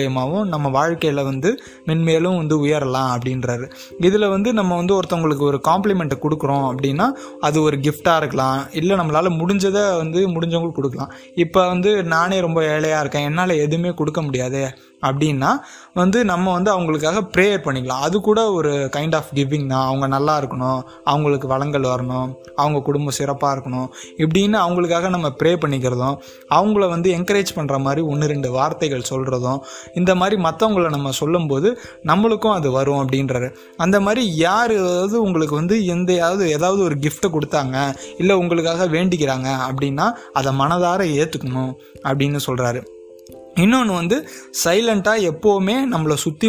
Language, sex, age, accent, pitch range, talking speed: Tamil, male, 20-39, native, 140-180 Hz, 140 wpm